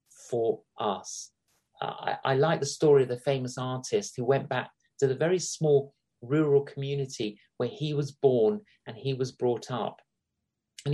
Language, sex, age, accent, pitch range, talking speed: English, male, 40-59, British, 130-185 Hz, 170 wpm